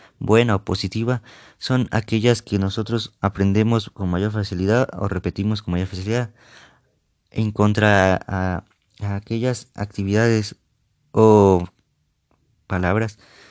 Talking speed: 105 wpm